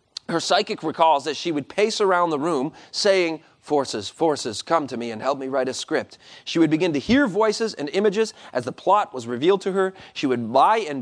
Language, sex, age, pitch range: English, male, 30-49, 150-215 Hz